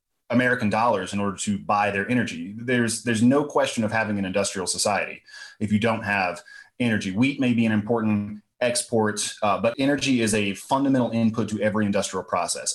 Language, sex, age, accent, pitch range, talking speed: English, male, 30-49, American, 100-115 Hz, 185 wpm